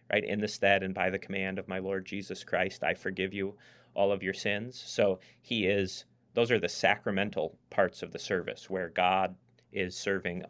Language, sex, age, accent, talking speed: English, male, 30-49, American, 200 wpm